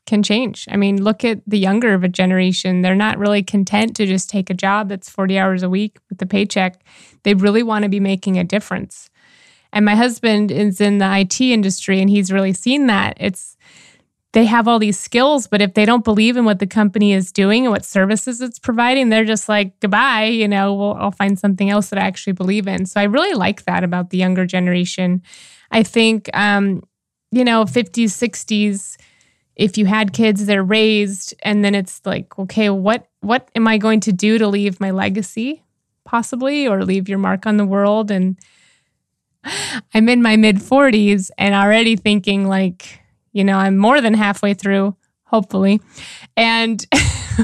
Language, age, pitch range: English, 20-39, 195-225 Hz